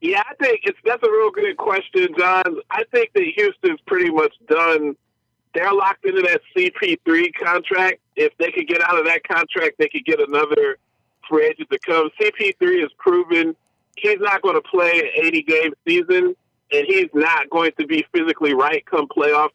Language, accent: English, American